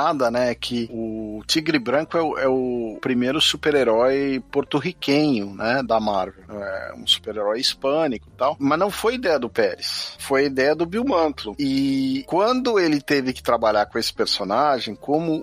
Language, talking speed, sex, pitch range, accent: Portuguese, 165 wpm, male, 120-155 Hz, Brazilian